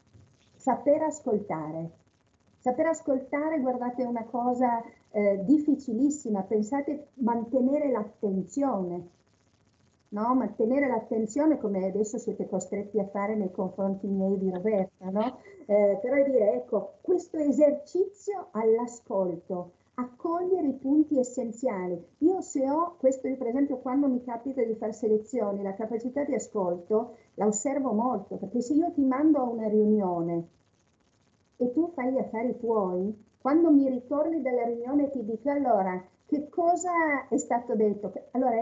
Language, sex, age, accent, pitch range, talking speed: Italian, female, 50-69, native, 200-275 Hz, 135 wpm